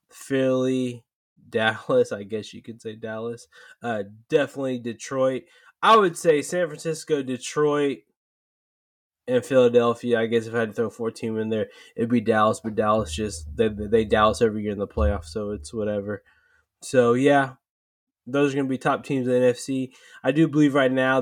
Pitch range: 120-160 Hz